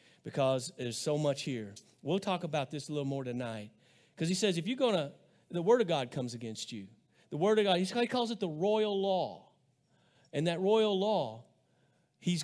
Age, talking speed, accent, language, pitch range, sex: 40-59, 205 wpm, American, English, 155-220 Hz, male